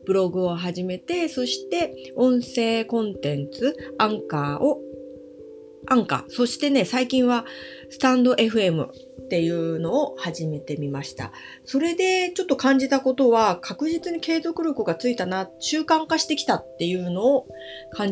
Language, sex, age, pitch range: Japanese, female, 30-49, 170-265 Hz